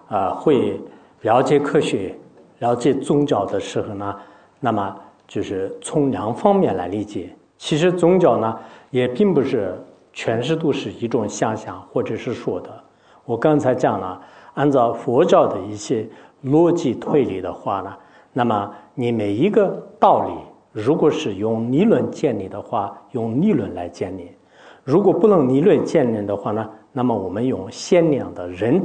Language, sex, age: English, male, 50-69